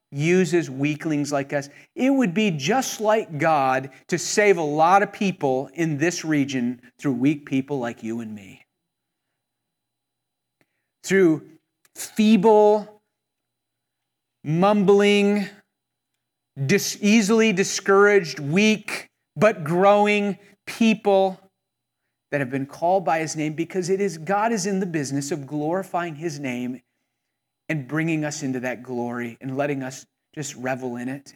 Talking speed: 130 wpm